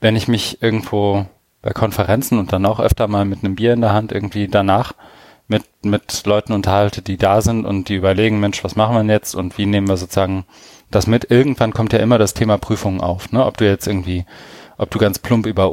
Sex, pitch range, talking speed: male, 100-110 Hz, 225 wpm